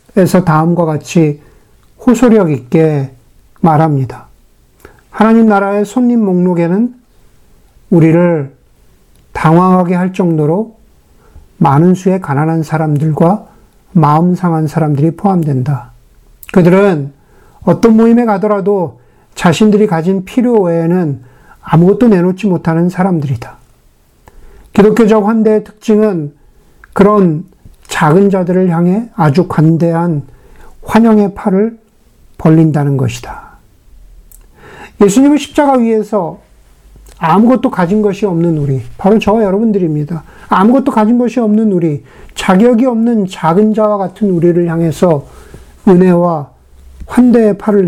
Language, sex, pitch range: Korean, male, 160-215 Hz